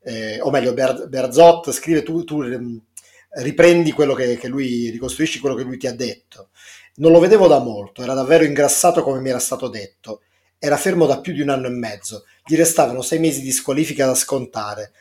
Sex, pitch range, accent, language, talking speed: male, 125-155 Hz, native, Italian, 195 wpm